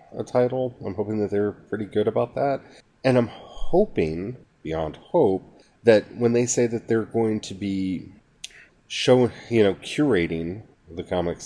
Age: 30-49